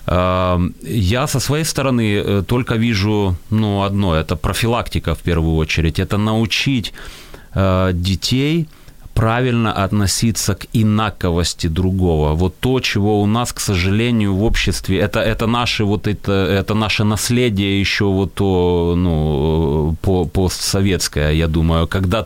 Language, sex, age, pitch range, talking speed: Ukrainian, male, 30-49, 90-110 Hz, 125 wpm